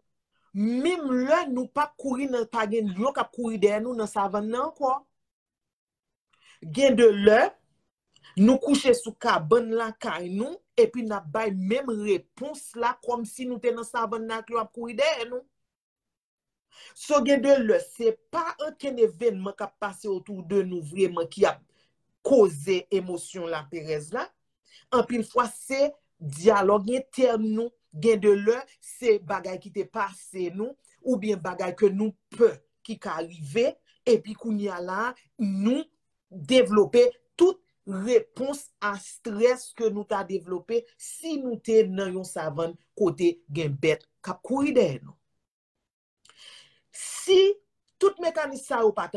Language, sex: French, male